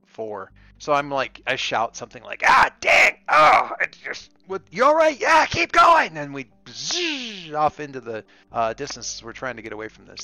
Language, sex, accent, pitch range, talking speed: English, male, American, 115-155 Hz, 205 wpm